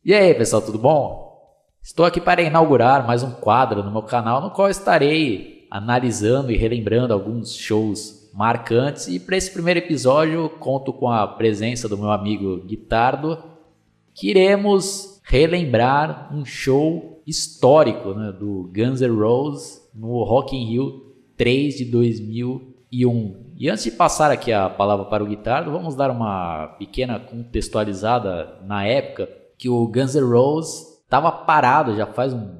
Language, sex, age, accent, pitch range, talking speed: Portuguese, male, 20-39, Brazilian, 100-135 Hz, 150 wpm